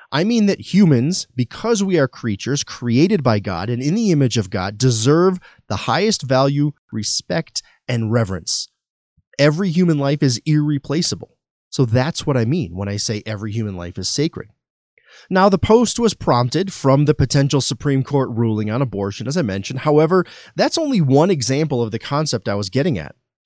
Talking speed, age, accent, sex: 180 wpm, 30-49, American, male